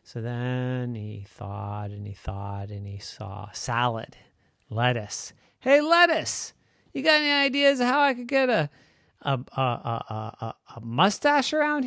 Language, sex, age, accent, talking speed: English, male, 40-59, American, 160 wpm